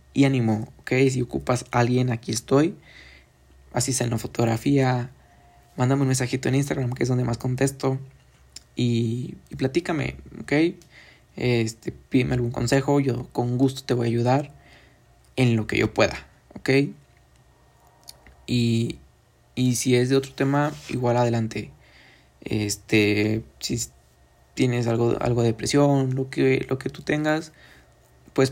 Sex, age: male, 20-39